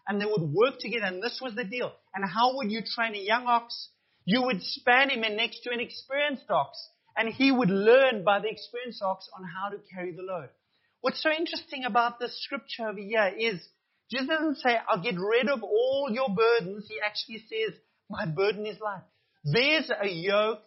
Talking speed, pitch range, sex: 205 wpm, 195-255 Hz, male